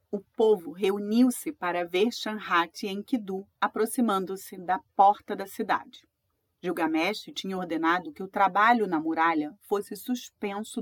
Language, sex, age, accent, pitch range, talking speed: Portuguese, female, 30-49, Brazilian, 190-275 Hz, 130 wpm